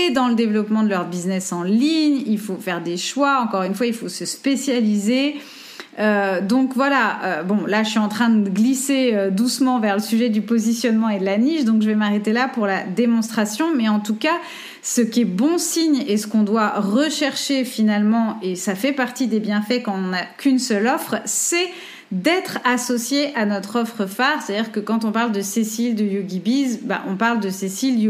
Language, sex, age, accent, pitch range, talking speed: French, female, 30-49, French, 205-260 Hz, 215 wpm